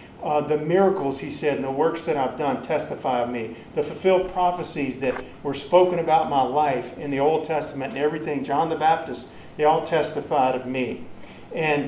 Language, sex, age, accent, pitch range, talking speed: English, male, 50-69, American, 135-170 Hz, 190 wpm